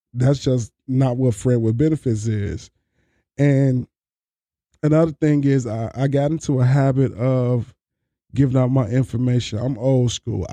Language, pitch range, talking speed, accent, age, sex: English, 115-140 Hz, 150 wpm, American, 20-39, male